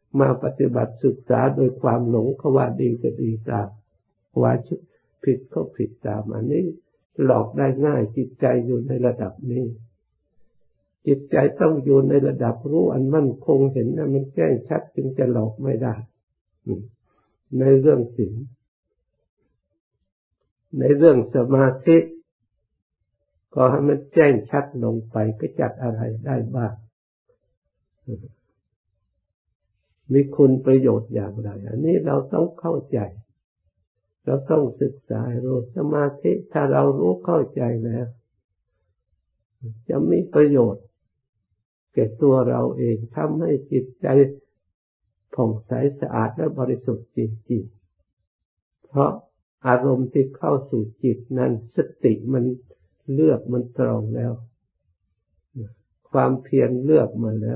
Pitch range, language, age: 110-135 Hz, Thai, 60-79